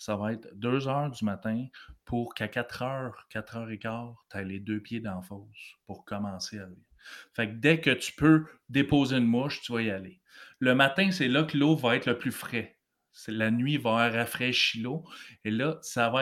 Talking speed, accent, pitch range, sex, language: 215 wpm, Canadian, 115-145 Hz, male, French